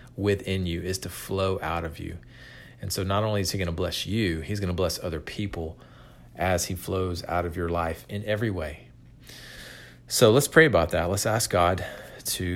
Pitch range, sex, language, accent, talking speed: 90-110 Hz, male, English, American, 205 wpm